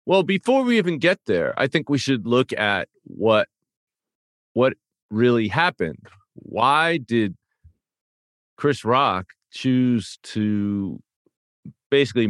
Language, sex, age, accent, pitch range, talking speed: English, male, 50-69, American, 95-130 Hz, 110 wpm